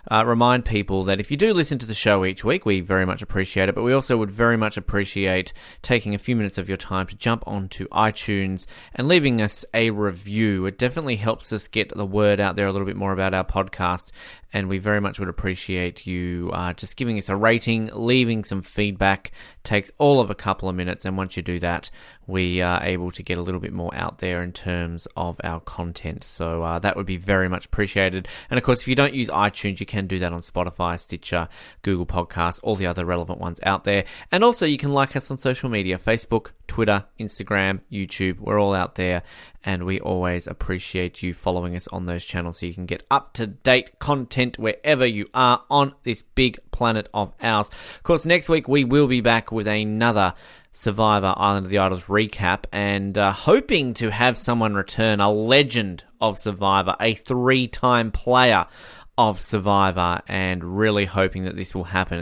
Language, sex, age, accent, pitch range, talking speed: English, male, 20-39, Australian, 90-115 Hz, 205 wpm